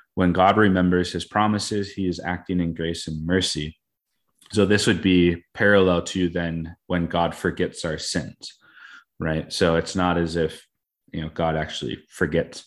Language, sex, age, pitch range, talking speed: English, male, 30-49, 85-95 Hz, 165 wpm